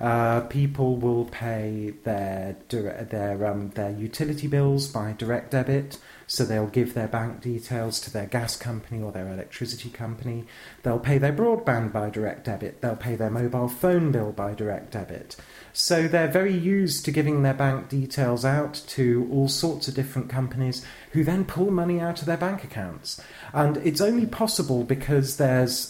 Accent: British